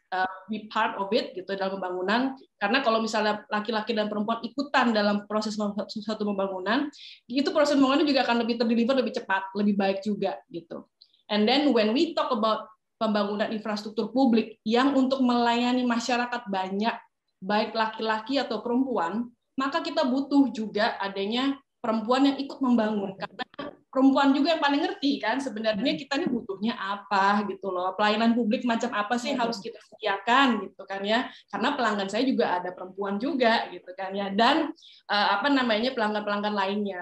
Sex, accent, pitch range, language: female, native, 205-260 Hz, Indonesian